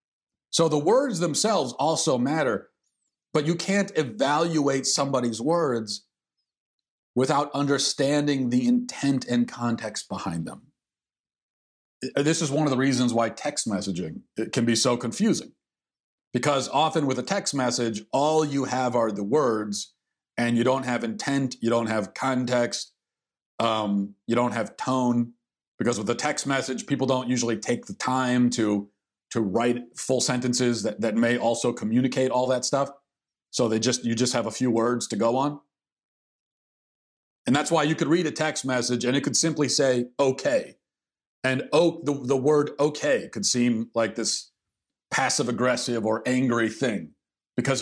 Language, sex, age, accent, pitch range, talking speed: English, male, 40-59, American, 115-140 Hz, 160 wpm